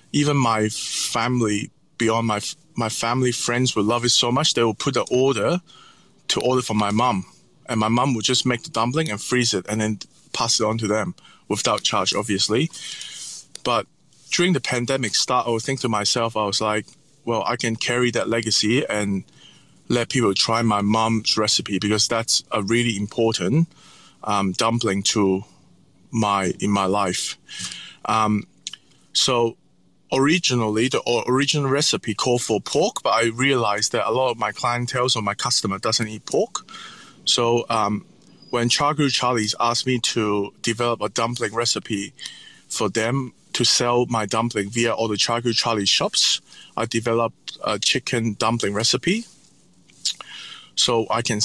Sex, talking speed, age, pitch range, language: male, 160 wpm, 20-39, 105-125 Hz, English